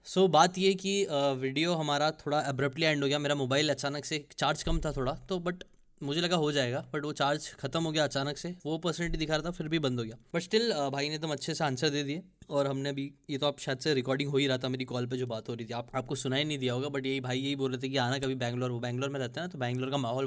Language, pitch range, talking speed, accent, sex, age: Hindi, 135-160 Hz, 300 wpm, native, male, 10-29